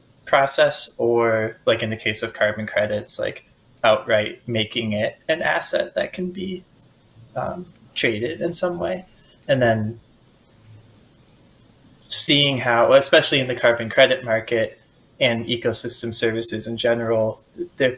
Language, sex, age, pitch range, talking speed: English, male, 20-39, 110-130 Hz, 130 wpm